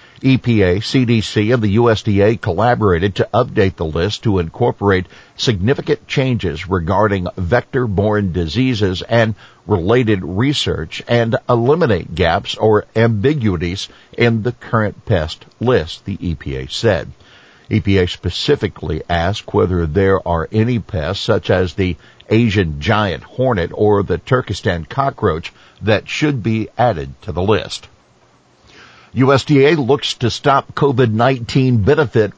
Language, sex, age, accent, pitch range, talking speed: English, male, 60-79, American, 95-120 Hz, 120 wpm